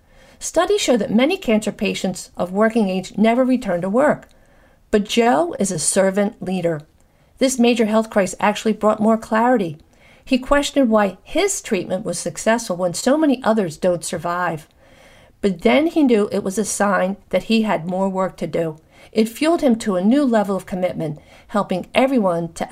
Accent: American